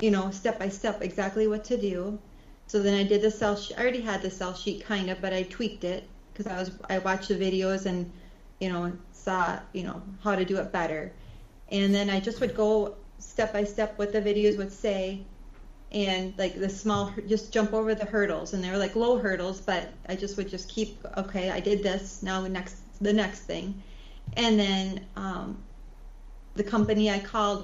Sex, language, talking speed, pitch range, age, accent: female, English, 210 wpm, 185-210 Hz, 30-49, American